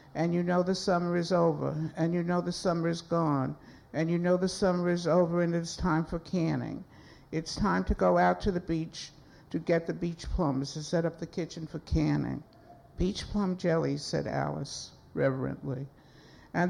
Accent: American